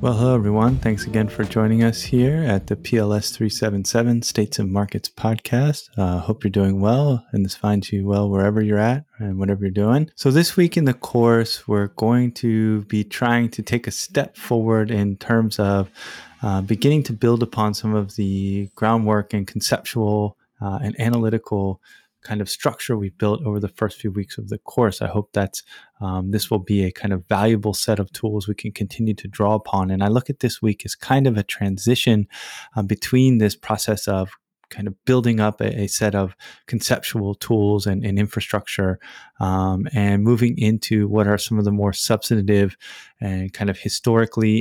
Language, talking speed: English, 195 wpm